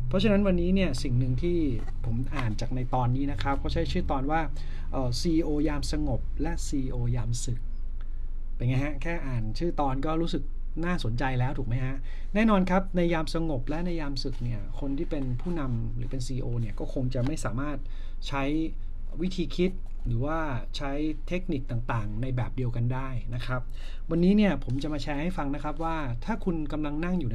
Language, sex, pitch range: Thai, male, 120-160 Hz